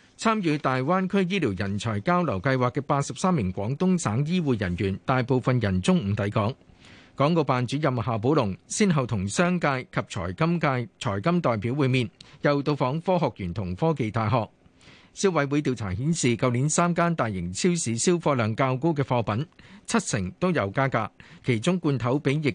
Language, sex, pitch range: Chinese, male, 120-165 Hz